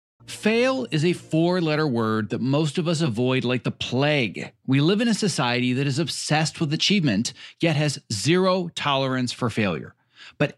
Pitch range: 125-180 Hz